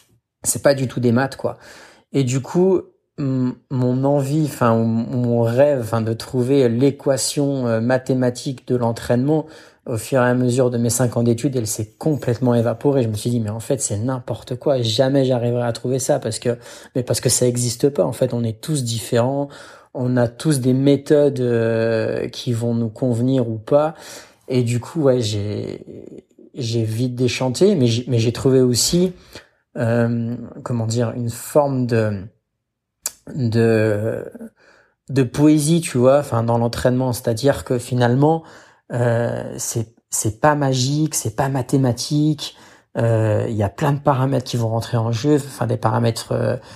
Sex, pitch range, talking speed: male, 115-140 Hz, 170 wpm